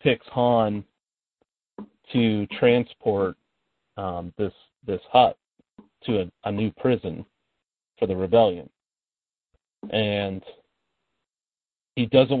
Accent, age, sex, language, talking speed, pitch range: American, 40-59, male, English, 90 wpm, 100-120 Hz